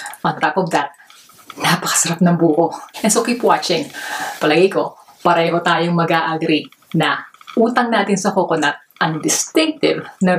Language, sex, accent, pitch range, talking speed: Filipino, female, native, 165-210 Hz, 150 wpm